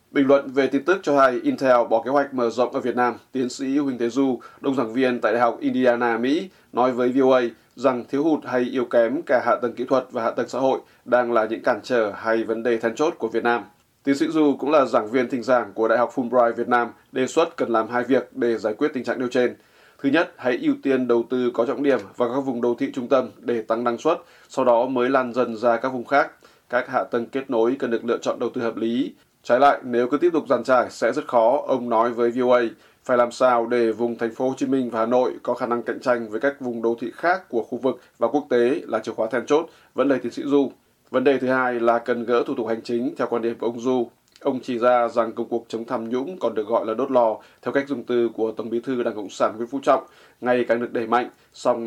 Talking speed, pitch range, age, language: 275 wpm, 115-130 Hz, 20-39, Vietnamese